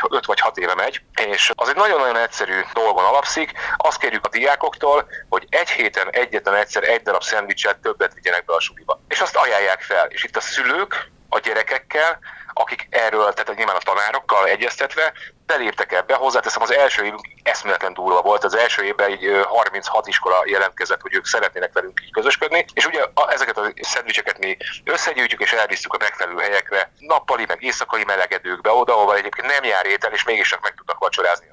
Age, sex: 30-49, male